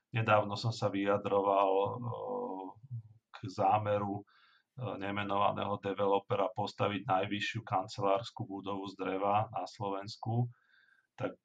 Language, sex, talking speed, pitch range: Slovak, male, 90 wpm, 100-115 Hz